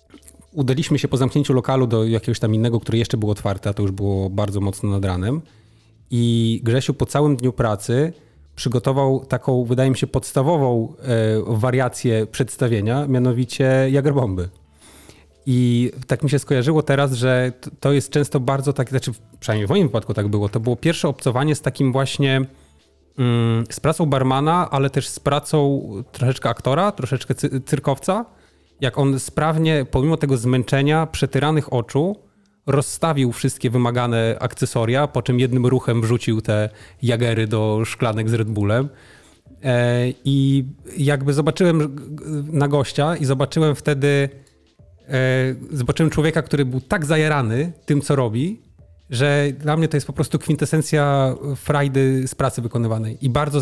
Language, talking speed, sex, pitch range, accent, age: Polish, 145 wpm, male, 120-145 Hz, native, 30-49